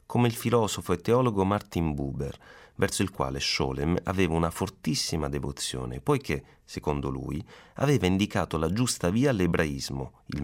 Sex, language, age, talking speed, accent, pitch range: male, Italian, 30-49, 145 wpm, native, 75-110 Hz